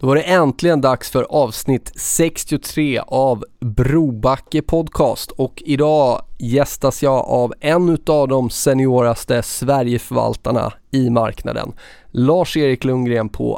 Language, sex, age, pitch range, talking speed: Swedish, male, 20-39, 120-145 Hz, 105 wpm